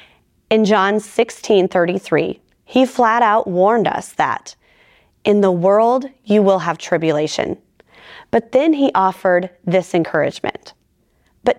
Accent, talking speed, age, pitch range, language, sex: American, 120 wpm, 30-49, 180-235 Hz, English, female